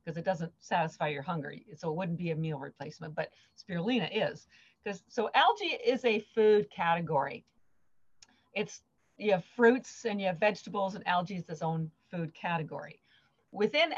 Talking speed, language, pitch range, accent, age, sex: 165 wpm, English, 170-235 Hz, American, 50-69, female